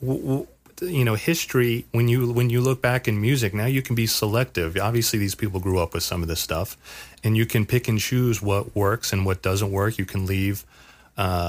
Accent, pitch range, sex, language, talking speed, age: American, 95-120 Hz, male, English, 220 wpm, 30-49